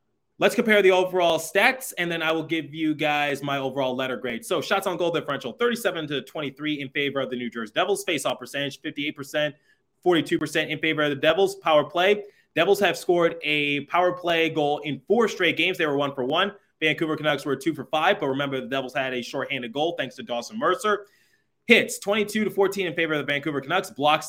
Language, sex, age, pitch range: English, male, 20-39, 135-165 Hz